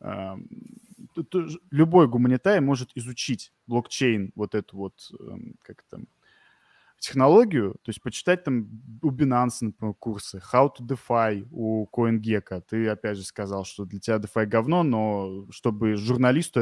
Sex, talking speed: male, 125 wpm